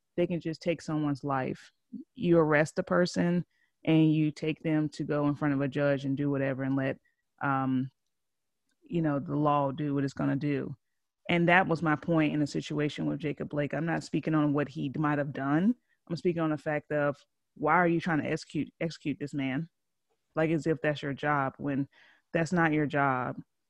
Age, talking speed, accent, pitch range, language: 30-49, 210 wpm, American, 145-170 Hz, English